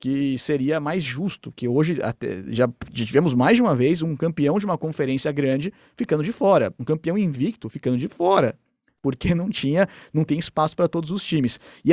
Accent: Brazilian